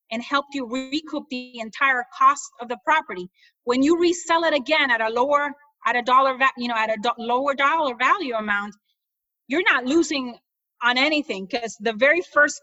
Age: 30-49